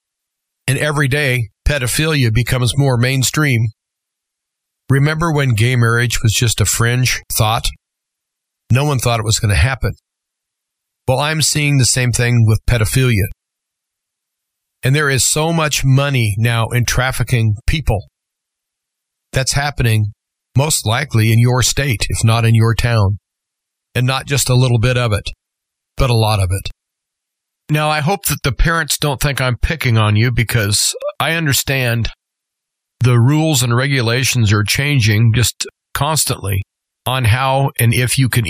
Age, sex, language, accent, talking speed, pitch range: 40-59, male, English, American, 150 wpm, 115-140 Hz